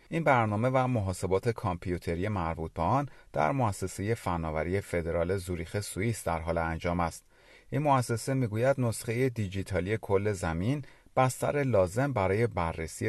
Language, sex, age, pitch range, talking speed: Persian, male, 40-59, 90-120 Hz, 130 wpm